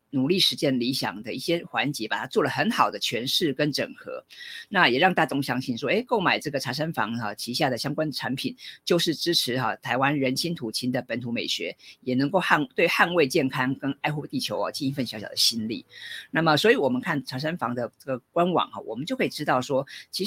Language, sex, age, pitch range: Chinese, female, 50-69, 130-170 Hz